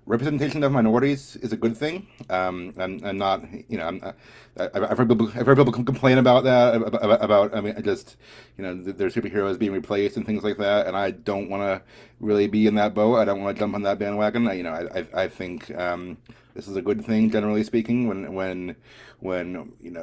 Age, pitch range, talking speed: 30-49, 95-115 Hz, 225 wpm